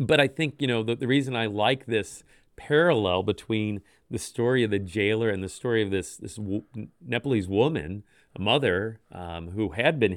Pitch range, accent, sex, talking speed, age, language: 100-140 Hz, American, male, 190 wpm, 40-59, English